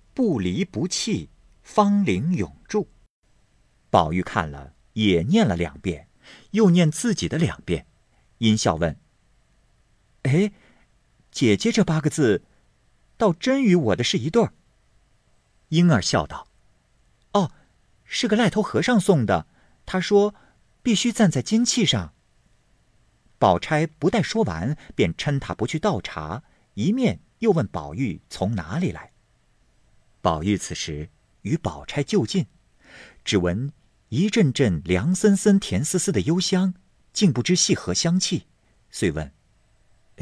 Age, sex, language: 50-69, male, Chinese